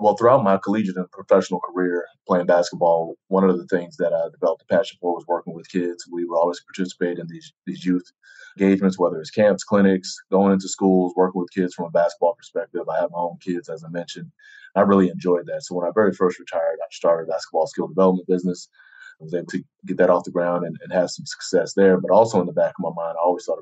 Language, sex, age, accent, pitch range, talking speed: English, male, 30-49, American, 90-105 Hz, 245 wpm